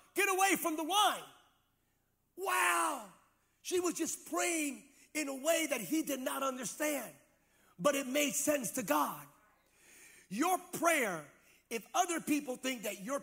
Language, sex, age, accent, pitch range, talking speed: English, male, 40-59, American, 225-300 Hz, 145 wpm